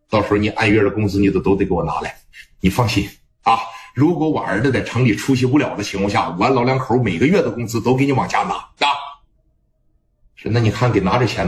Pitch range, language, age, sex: 100-135 Hz, Chinese, 50-69, male